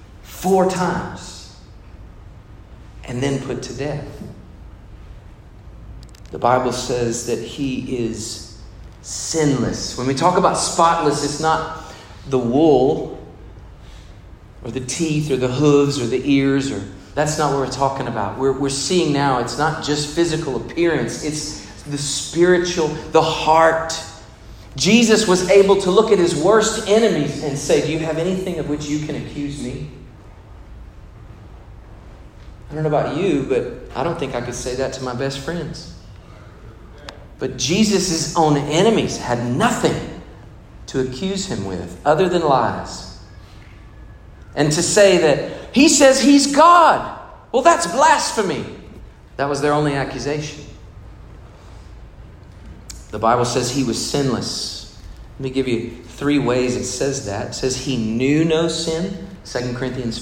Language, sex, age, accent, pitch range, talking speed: English, male, 40-59, American, 105-155 Hz, 140 wpm